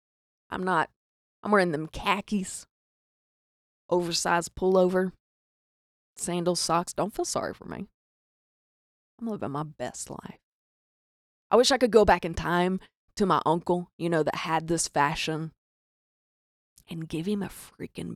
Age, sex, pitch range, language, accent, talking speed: 20-39, female, 150-195 Hz, English, American, 140 wpm